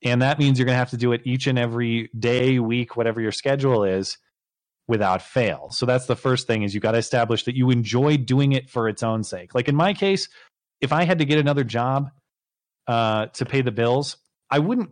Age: 30-49